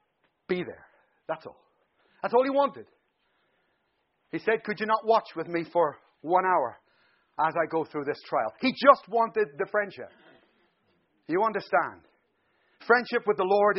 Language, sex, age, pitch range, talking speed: English, male, 40-59, 180-240 Hz, 155 wpm